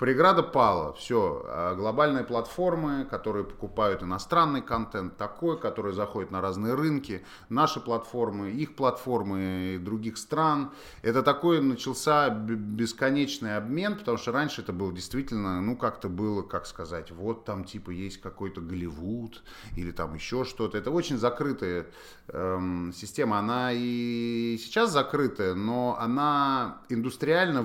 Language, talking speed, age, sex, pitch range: Russian, 130 wpm, 30-49, male, 95-120 Hz